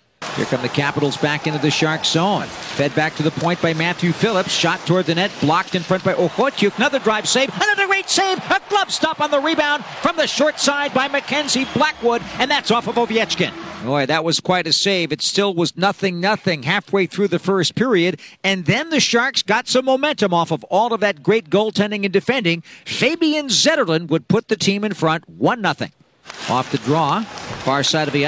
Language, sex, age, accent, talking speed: English, male, 50-69, American, 205 wpm